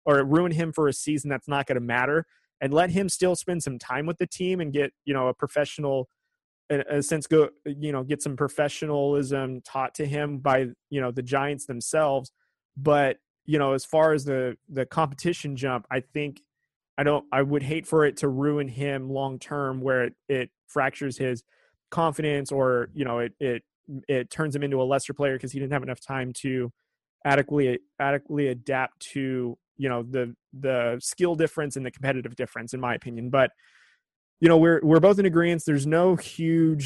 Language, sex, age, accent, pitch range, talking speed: English, male, 20-39, American, 130-150 Hz, 200 wpm